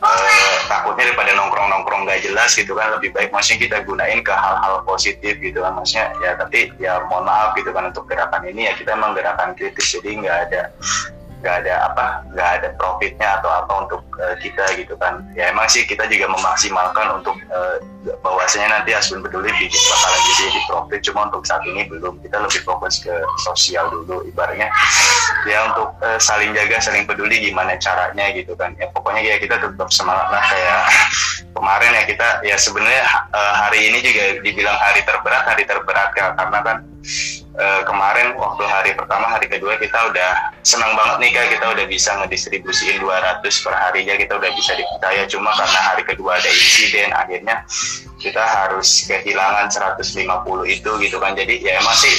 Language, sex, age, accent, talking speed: Indonesian, male, 20-39, native, 175 wpm